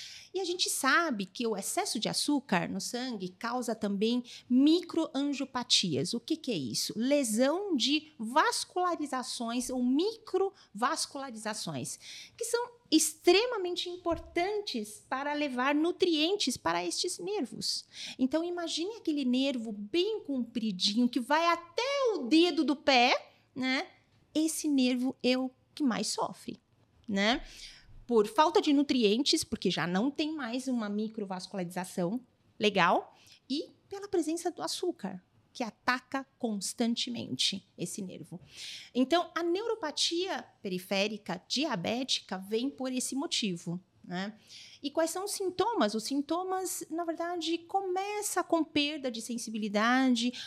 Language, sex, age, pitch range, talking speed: Portuguese, female, 40-59, 225-335 Hz, 120 wpm